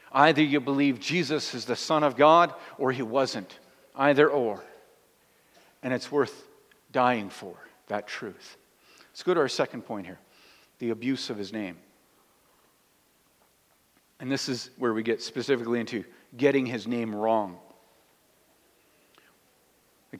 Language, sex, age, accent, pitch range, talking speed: English, male, 50-69, American, 125-150 Hz, 135 wpm